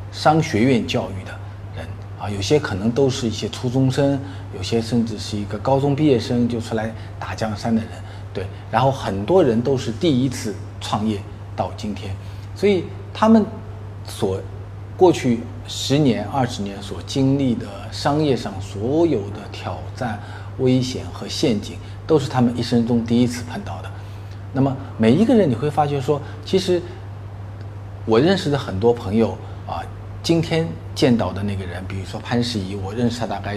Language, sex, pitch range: Chinese, male, 100-125 Hz